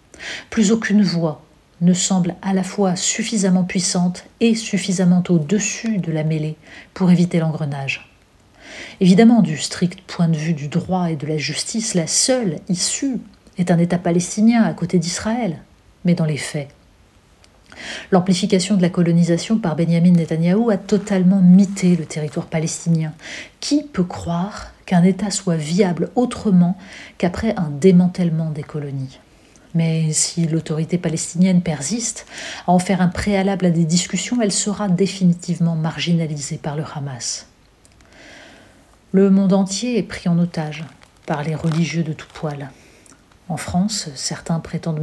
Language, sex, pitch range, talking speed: French, female, 160-195 Hz, 145 wpm